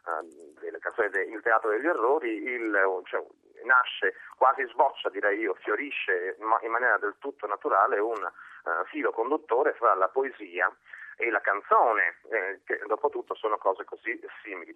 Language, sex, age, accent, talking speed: Italian, male, 40-59, native, 140 wpm